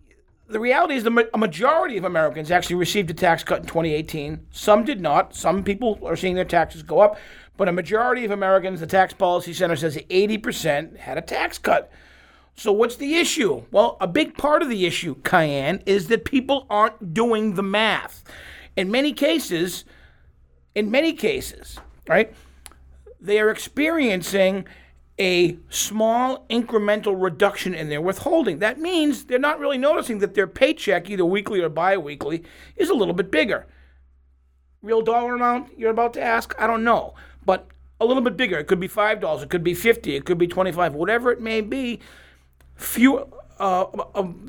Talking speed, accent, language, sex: 175 wpm, American, English, male